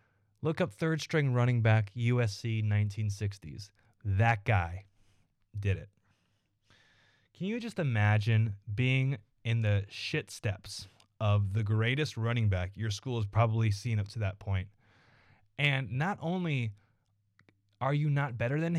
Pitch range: 105-130 Hz